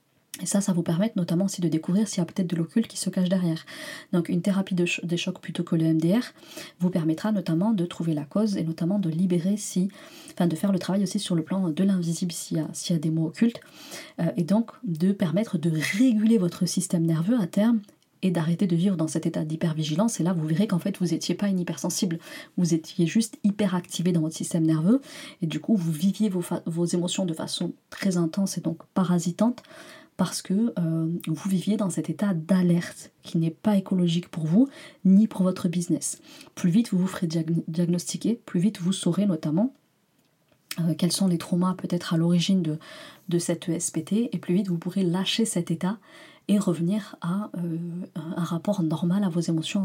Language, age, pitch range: French, 30-49, 170-200 Hz